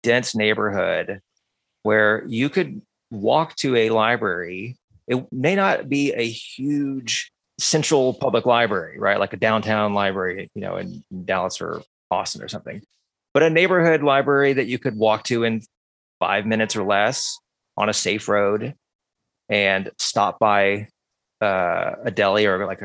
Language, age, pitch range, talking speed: English, 30-49, 95-120 Hz, 150 wpm